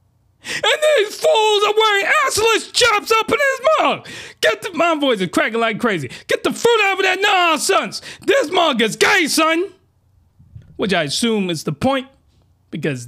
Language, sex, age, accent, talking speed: English, male, 30-49, American, 180 wpm